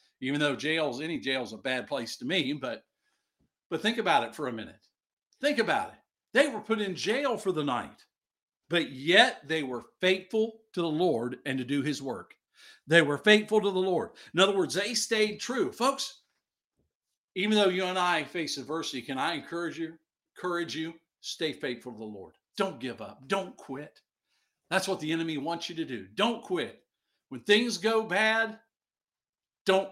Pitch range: 150-210 Hz